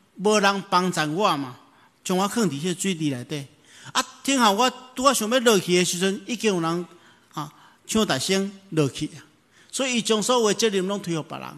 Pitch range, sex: 125-190 Hz, male